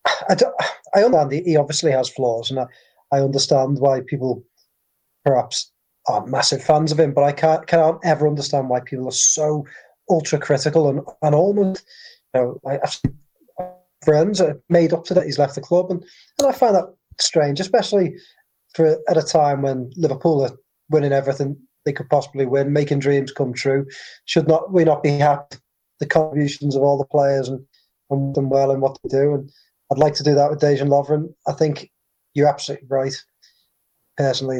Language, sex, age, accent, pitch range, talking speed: English, male, 20-39, British, 135-160 Hz, 185 wpm